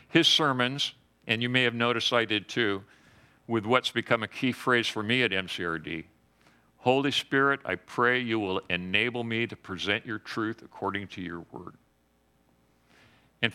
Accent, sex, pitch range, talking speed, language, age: American, male, 95-125 Hz, 165 wpm, English, 50-69